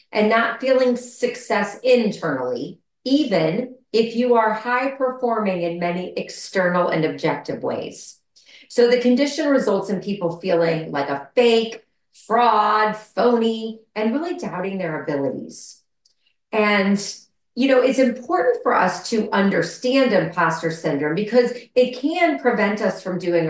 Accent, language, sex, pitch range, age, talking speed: American, English, female, 175-245 Hz, 40-59, 135 wpm